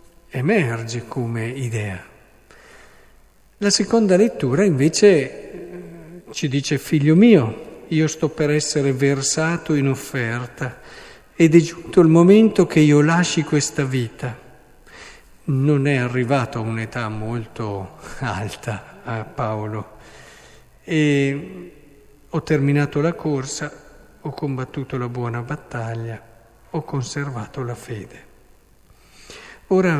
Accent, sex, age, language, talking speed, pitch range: native, male, 50-69, Italian, 105 wpm, 120-155 Hz